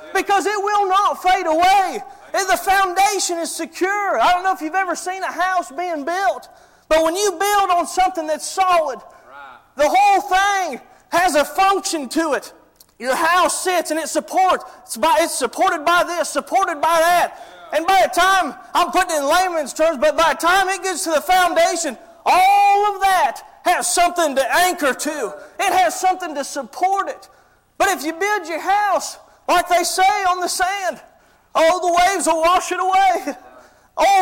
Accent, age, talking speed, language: American, 30-49, 180 wpm, English